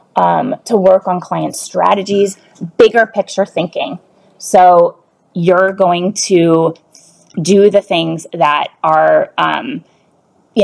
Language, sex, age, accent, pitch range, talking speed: English, female, 20-39, American, 165-205 Hz, 115 wpm